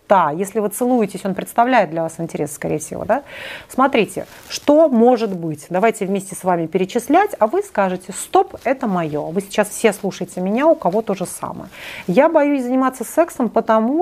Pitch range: 175-255 Hz